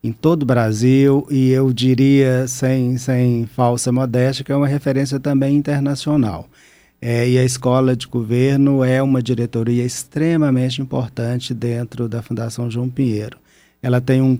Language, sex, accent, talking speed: Portuguese, male, Brazilian, 150 wpm